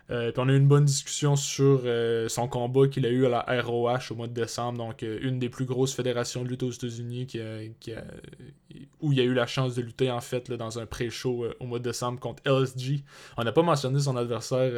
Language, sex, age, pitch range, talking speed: French, male, 20-39, 120-135 Hz, 260 wpm